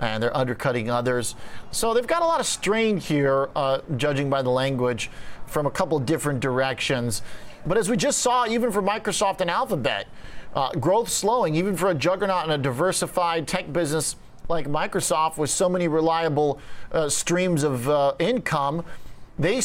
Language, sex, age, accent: English, male, 40-59, American